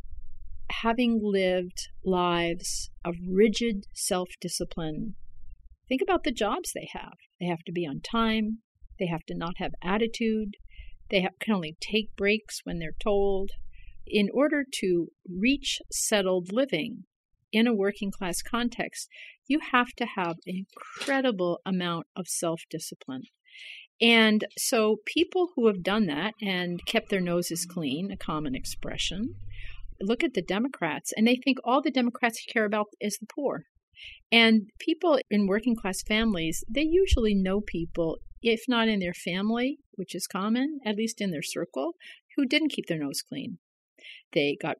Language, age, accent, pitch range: English, 50-69, American, 185-240 Hz